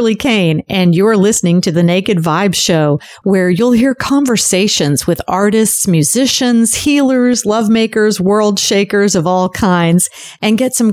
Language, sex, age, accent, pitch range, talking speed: English, female, 40-59, American, 175-230 Hz, 145 wpm